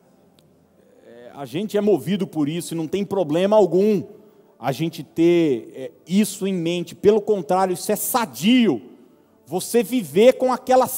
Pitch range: 150-220 Hz